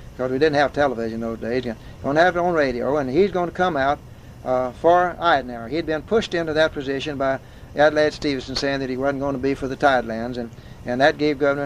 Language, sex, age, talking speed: English, male, 60-79, 240 wpm